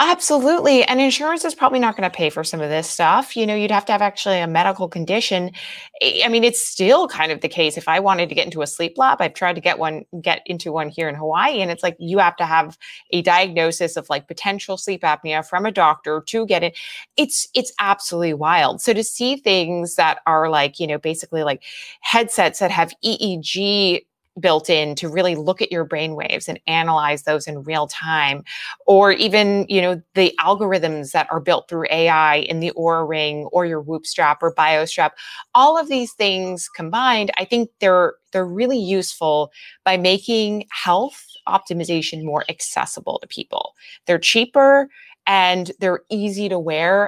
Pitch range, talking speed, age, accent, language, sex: 160-205 Hz, 190 wpm, 20-39, American, English, female